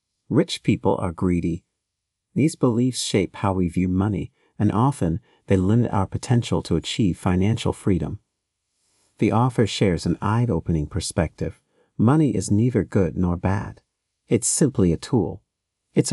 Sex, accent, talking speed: male, American, 140 wpm